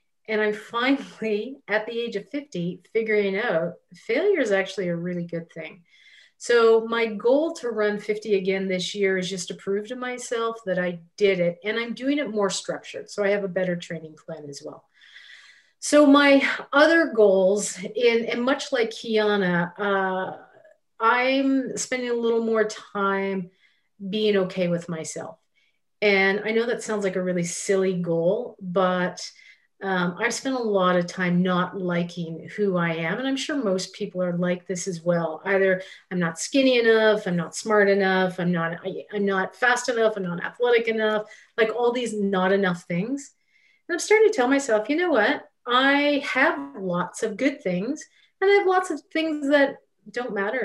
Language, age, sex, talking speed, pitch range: English, 40-59, female, 180 wpm, 185-245 Hz